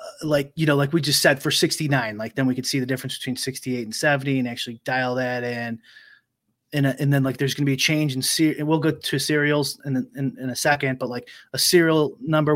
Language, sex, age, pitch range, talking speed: English, male, 30-49, 130-160 Hz, 250 wpm